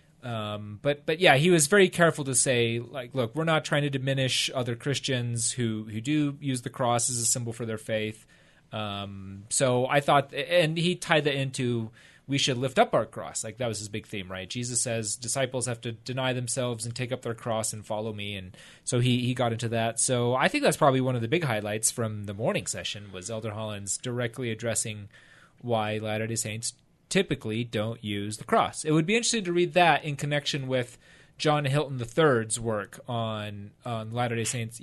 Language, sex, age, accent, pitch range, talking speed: English, male, 30-49, American, 115-140 Hz, 205 wpm